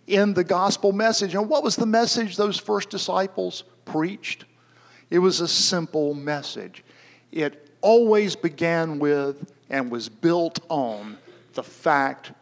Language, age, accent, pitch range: English, 50-69, American, 140-190 Hz